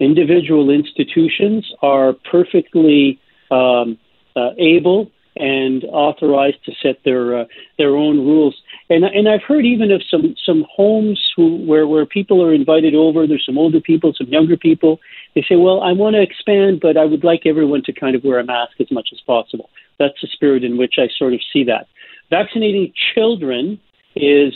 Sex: male